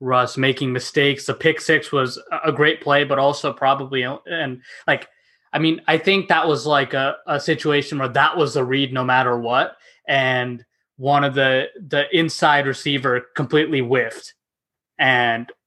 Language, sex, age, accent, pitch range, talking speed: English, male, 20-39, American, 125-155 Hz, 165 wpm